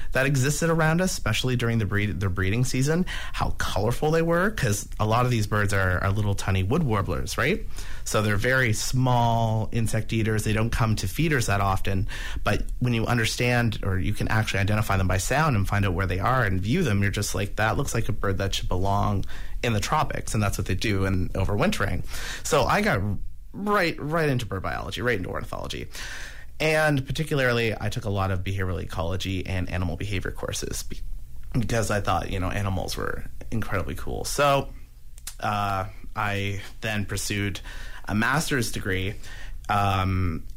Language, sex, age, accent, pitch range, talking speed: English, male, 30-49, American, 95-115 Hz, 185 wpm